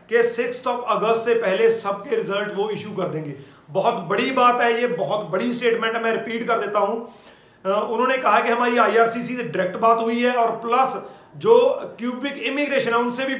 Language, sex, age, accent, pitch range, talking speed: Hindi, male, 40-59, native, 200-240 Hz, 110 wpm